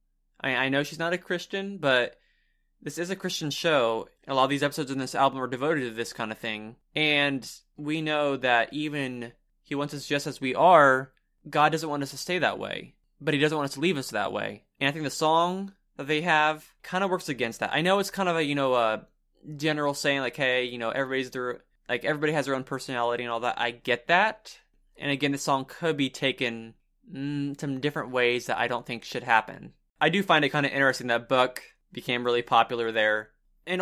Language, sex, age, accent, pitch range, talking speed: English, male, 20-39, American, 120-155 Hz, 235 wpm